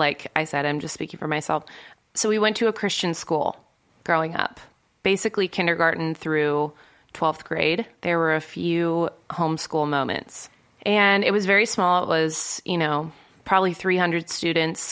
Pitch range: 155-195 Hz